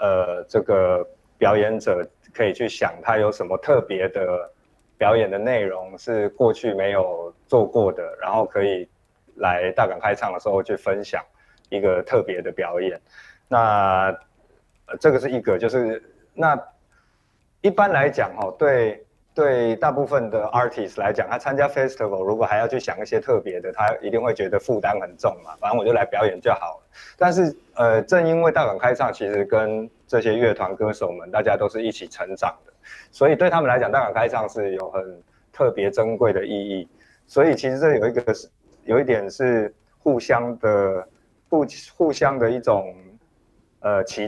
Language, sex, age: Japanese, male, 20-39